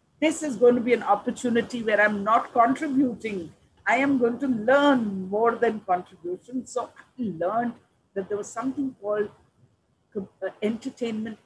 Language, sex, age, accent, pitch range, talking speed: English, female, 50-69, Indian, 175-235 Hz, 145 wpm